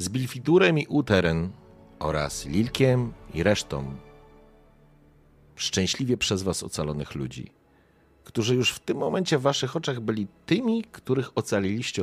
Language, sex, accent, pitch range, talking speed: Polish, male, native, 80-110 Hz, 125 wpm